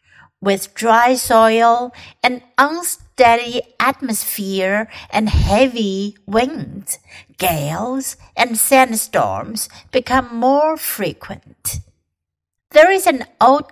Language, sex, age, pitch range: Chinese, female, 60-79, 205-265 Hz